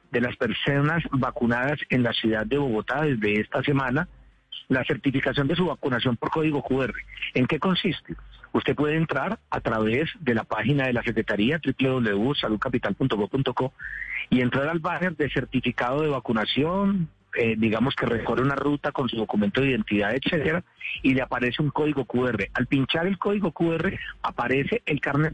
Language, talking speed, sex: Spanish, 165 wpm, male